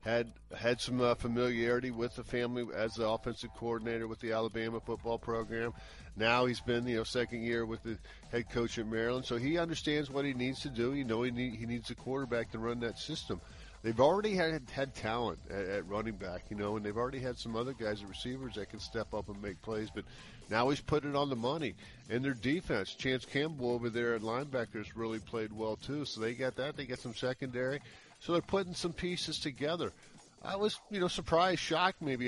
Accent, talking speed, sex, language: American, 220 wpm, male, English